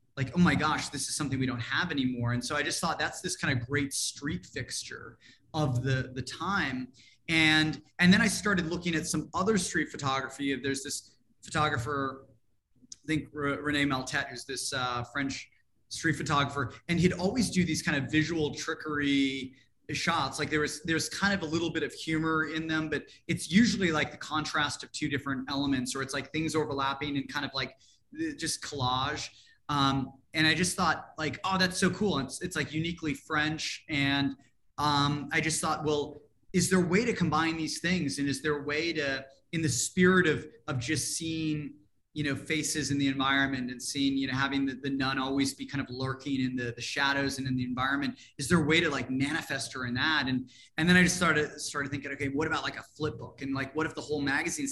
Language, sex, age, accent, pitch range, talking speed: English, male, 20-39, American, 135-160 Hz, 215 wpm